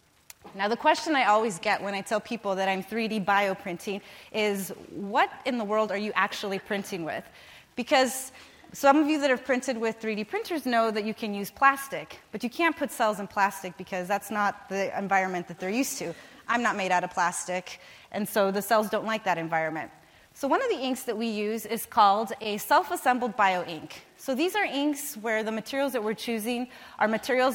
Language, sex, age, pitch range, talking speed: English, female, 30-49, 200-260 Hz, 210 wpm